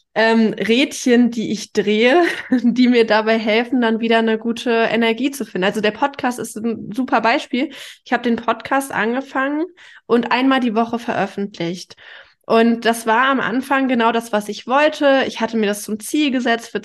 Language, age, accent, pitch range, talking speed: German, 20-39, German, 210-245 Hz, 180 wpm